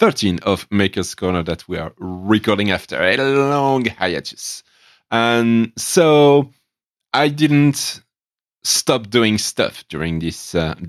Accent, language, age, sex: French, English, 30-49, male